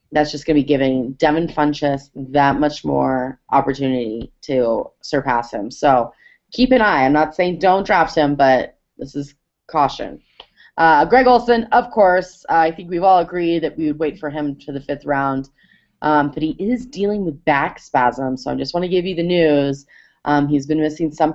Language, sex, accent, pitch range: English, female, American, 145-195 Hz